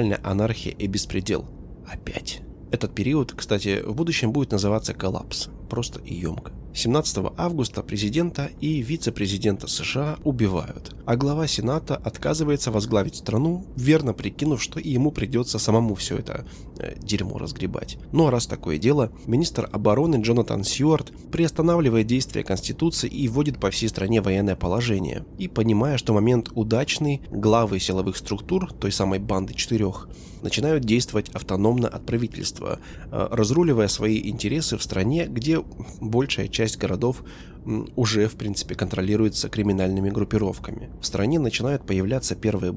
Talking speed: 135 wpm